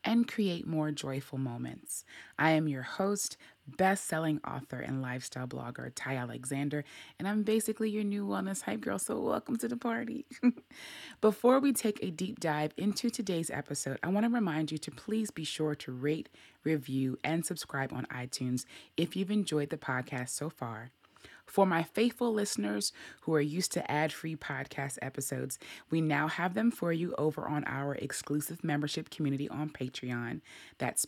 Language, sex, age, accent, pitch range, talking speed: English, female, 20-39, American, 135-190 Hz, 165 wpm